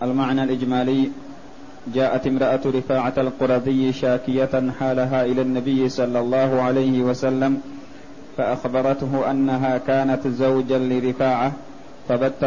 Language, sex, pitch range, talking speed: Arabic, male, 130-135 Hz, 95 wpm